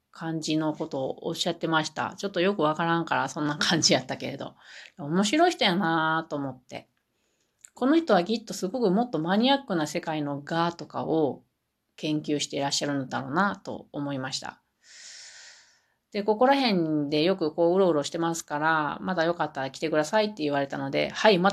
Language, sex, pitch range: Japanese, female, 155-205 Hz